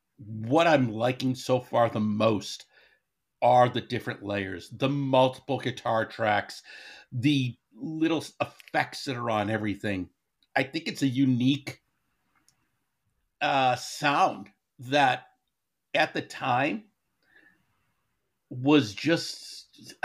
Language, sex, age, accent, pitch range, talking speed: English, male, 60-79, American, 110-140 Hz, 110 wpm